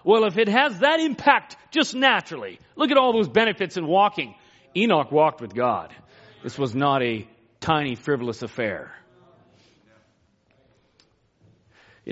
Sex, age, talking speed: male, 40-59, 135 wpm